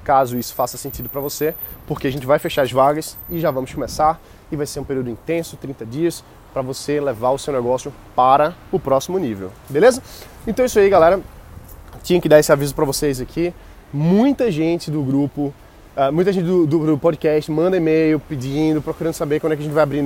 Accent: Brazilian